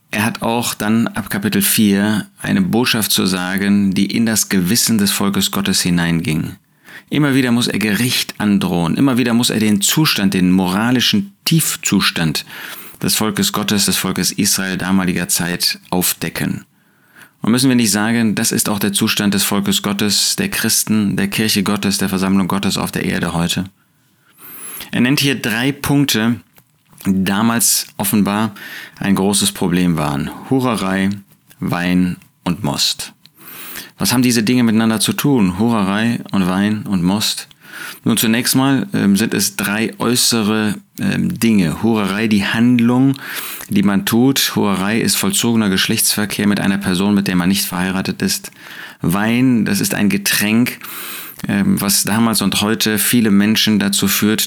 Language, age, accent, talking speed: German, 30-49, German, 150 wpm